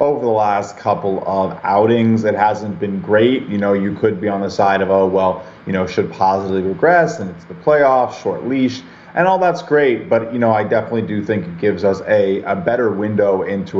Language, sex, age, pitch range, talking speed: English, male, 30-49, 95-120 Hz, 220 wpm